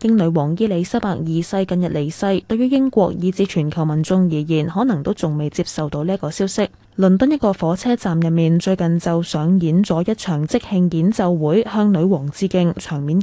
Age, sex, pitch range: 10-29, female, 165-225 Hz